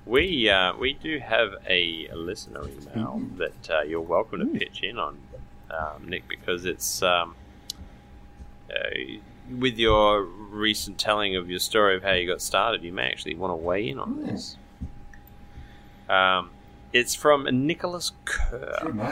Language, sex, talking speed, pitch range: English, male, 150 wpm, 90-125 Hz